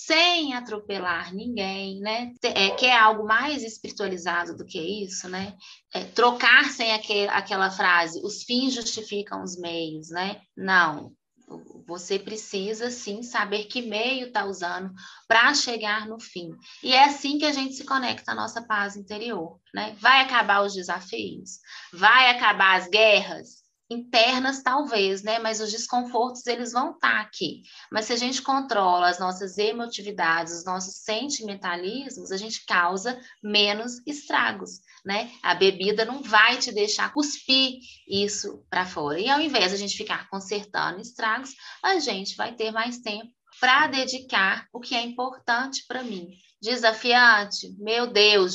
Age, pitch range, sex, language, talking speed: 20-39, 190-245 Hz, female, Portuguese, 150 wpm